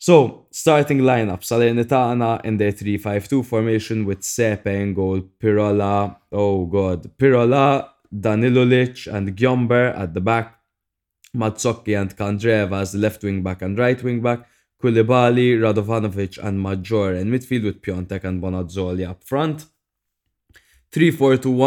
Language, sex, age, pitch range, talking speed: English, male, 20-39, 95-115 Hz, 135 wpm